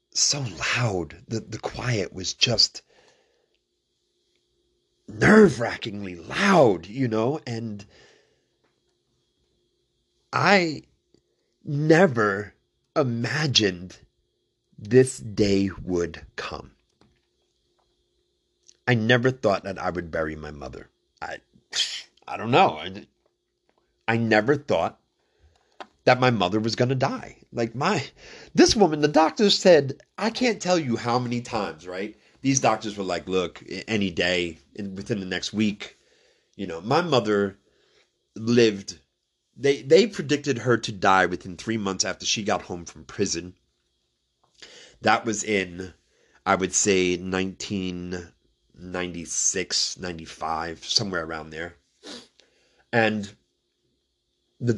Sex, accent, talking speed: male, American, 115 wpm